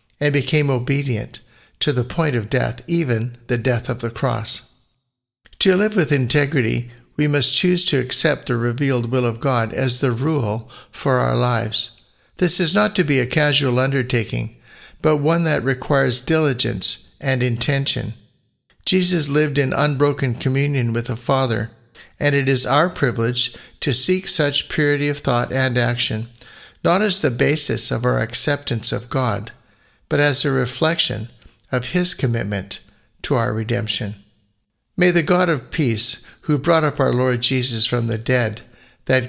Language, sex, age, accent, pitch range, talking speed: English, male, 60-79, American, 115-145 Hz, 160 wpm